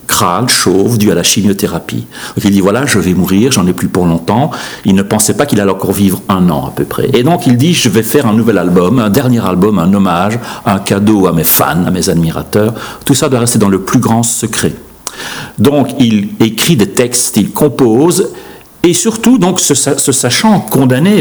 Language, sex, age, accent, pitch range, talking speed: French, male, 60-79, French, 100-130 Hz, 220 wpm